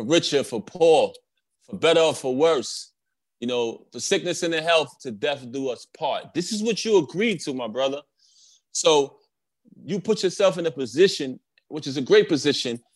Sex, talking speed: male, 185 wpm